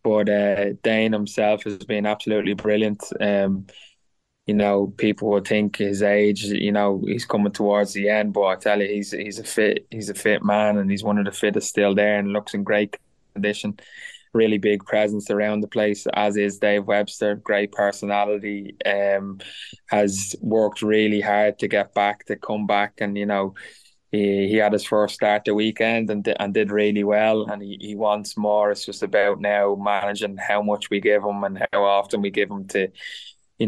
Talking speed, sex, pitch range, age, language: 195 wpm, male, 100-105 Hz, 20-39, English